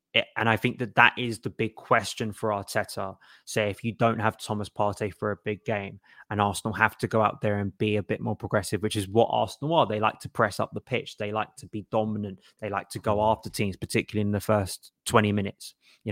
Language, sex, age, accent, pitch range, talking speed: English, male, 20-39, British, 105-120 Hz, 240 wpm